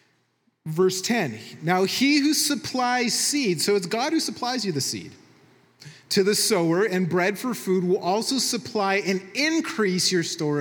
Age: 30-49